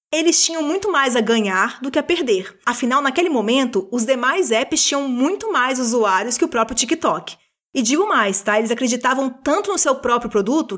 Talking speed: 195 wpm